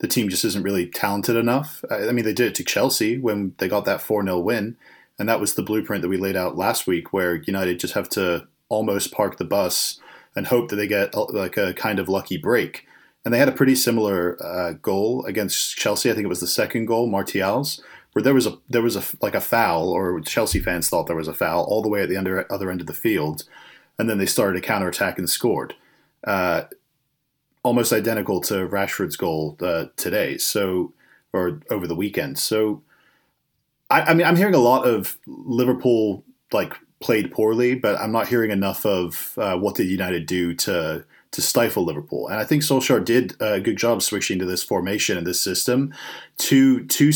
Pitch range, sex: 95-130 Hz, male